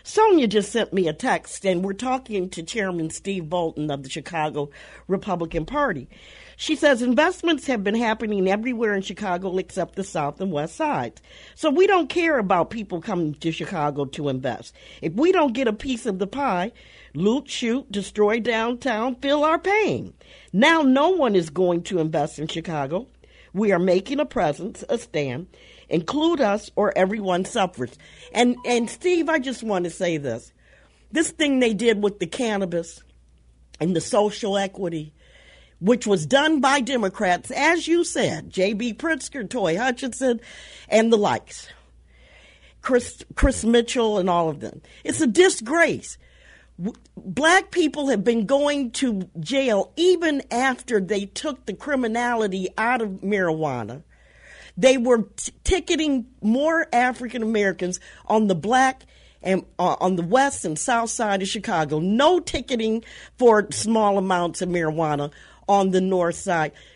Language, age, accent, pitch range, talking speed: English, 50-69, American, 180-265 Hz, 155 wpm